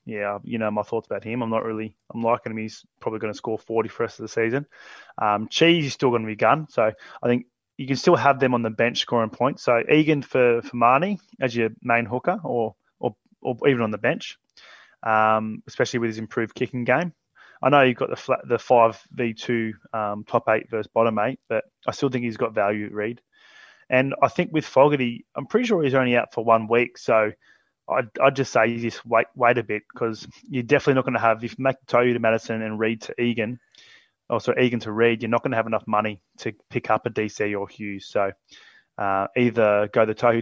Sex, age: male, 20-39